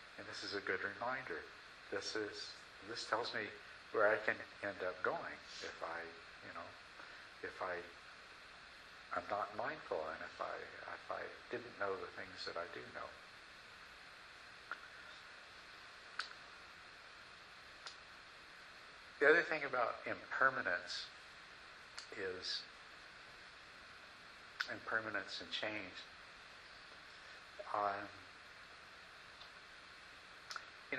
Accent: American